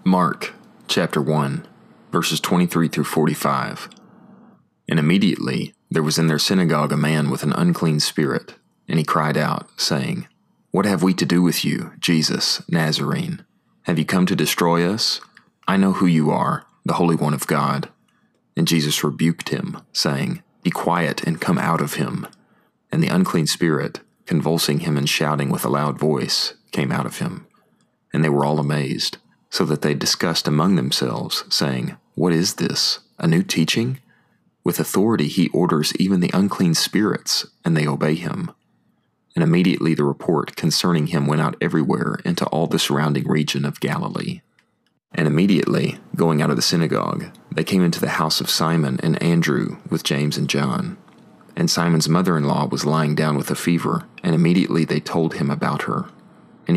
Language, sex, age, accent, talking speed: English, male, 30-49, American, 170 wpm